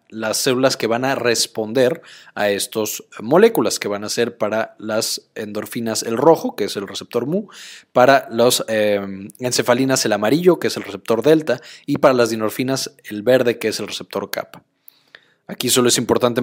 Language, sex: Spanish, male